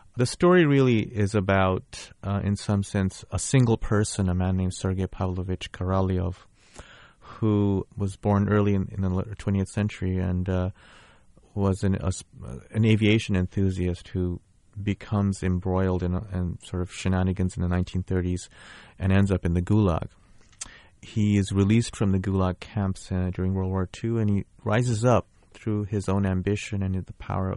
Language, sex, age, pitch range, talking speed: English, male, 30-49, 90-105 Hz, 160 wpm